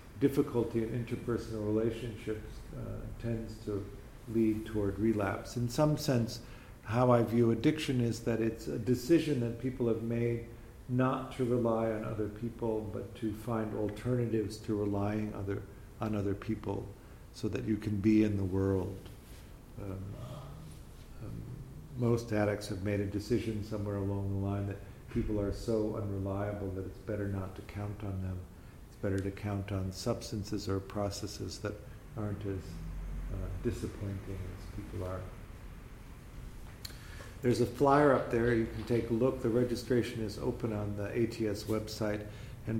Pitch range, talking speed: 100-120 Hz, 150 wpm